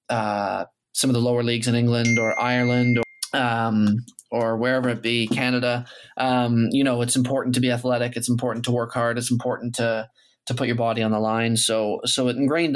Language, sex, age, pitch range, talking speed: English, male, 20-39, 115-125 Hz, 205 wpm